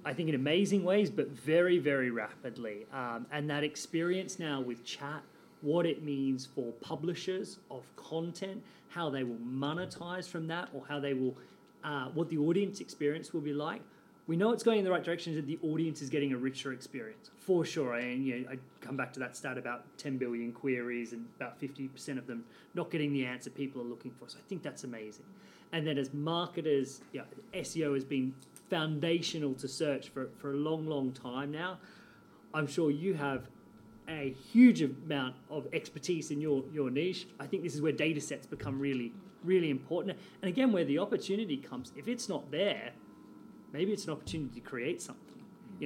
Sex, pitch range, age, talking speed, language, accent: male, 135-175 Hz, 30-49, 200 wpm, English, Australian